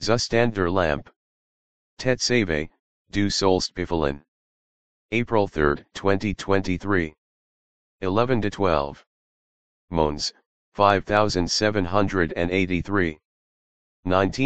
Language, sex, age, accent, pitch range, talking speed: English, male, 30-49, American, 85-100 Hz, 50 wpm